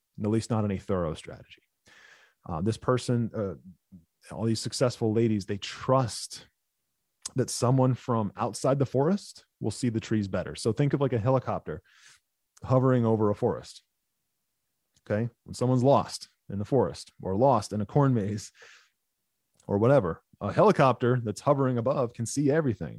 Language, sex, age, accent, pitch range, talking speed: English, male, 30-49, American, 100-130 Hz, 160 wpm